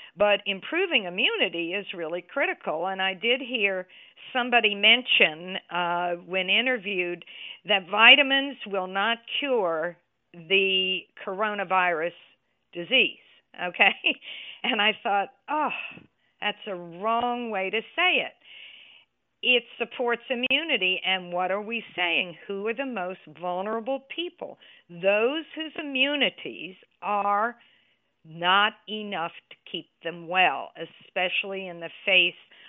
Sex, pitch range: female, 180-245 Hz